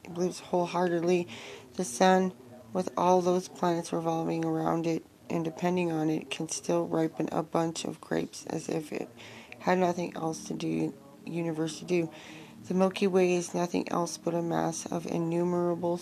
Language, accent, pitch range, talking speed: English, American, 115-175 Hz, 165 wpm